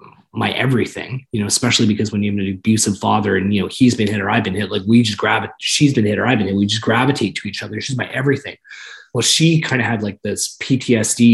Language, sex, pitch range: English, male, 115-150 Hz